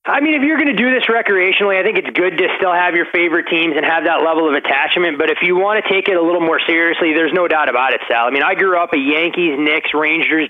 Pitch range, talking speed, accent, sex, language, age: 150-180 Hz, 290 wpm, American, male, English, 20-39